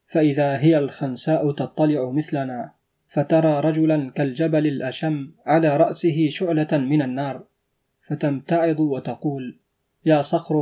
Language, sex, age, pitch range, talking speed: Arabic, male, 30-49, 140-160 Hz, 100 wpm